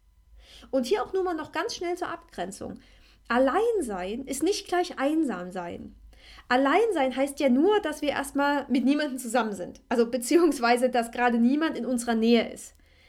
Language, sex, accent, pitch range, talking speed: German, female, German, 235-310 Hz, 165 wpm